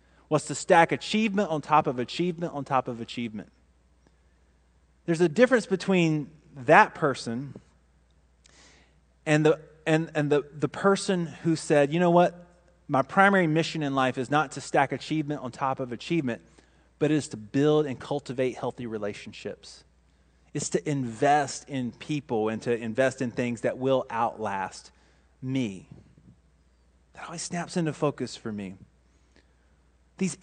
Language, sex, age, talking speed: English, male, 30-49, 140 wpm